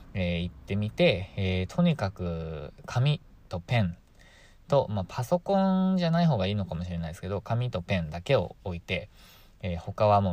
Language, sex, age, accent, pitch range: Japanese, male, 20-39, native, 90-120 Hz